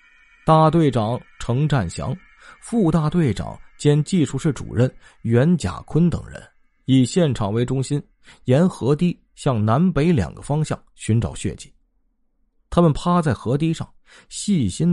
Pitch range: 120-165 Hz